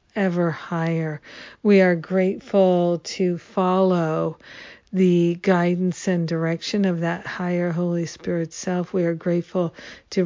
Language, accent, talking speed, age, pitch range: English, American, 125 wpm, 50-69, 165-190 Hz